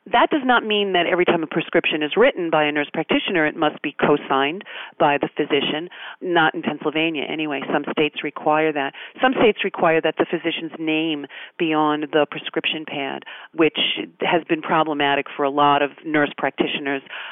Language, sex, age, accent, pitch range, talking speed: English, female, 40-59, American, 150-205 Hz, 180 wpm